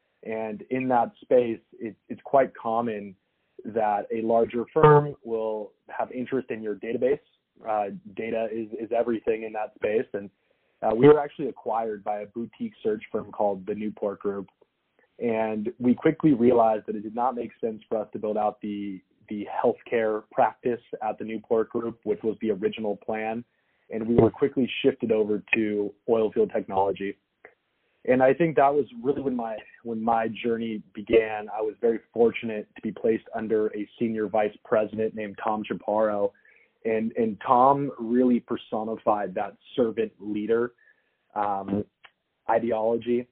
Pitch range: 105-125 Hz